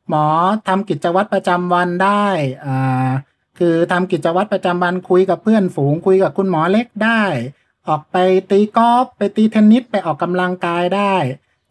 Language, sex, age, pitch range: Thai, male, 60-79, 145-190 Hz